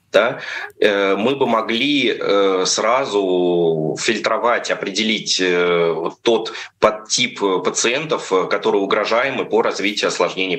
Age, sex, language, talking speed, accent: 20-39, male, Russian, 85 wpm, native